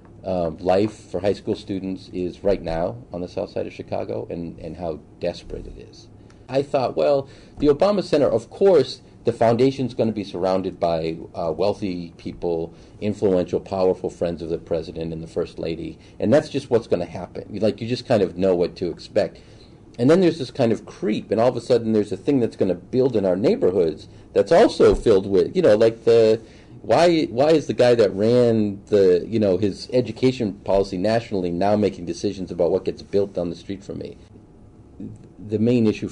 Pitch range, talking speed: 90-110 Hz, 205 wpm